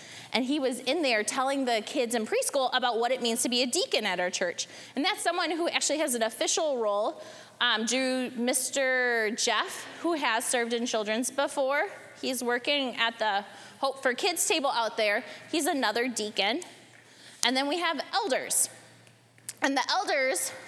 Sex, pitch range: female, 230-295 Hz